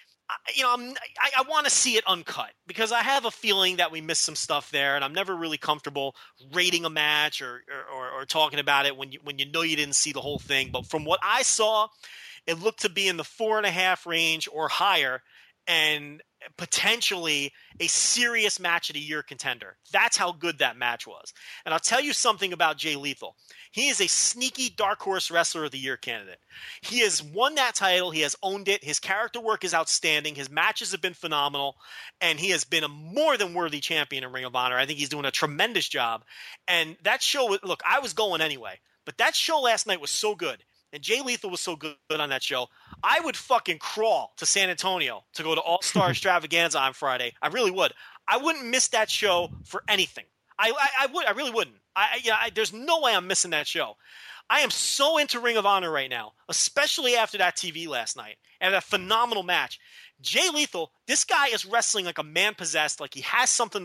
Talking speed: 220 wpm